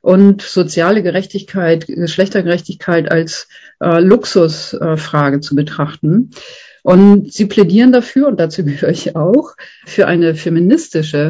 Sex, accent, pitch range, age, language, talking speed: female, German, 160-200 Hz, 40-59, German, 115 wpm